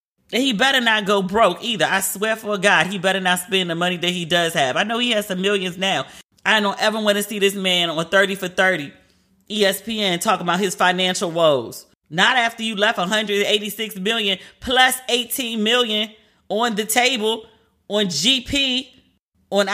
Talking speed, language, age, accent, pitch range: 185 wpm, English, 30-49, American, 175-225 Hz